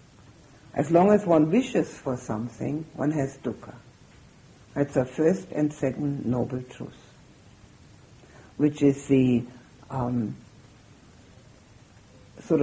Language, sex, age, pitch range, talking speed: English, female, 60-79, 125-165 Hz, 105 wpm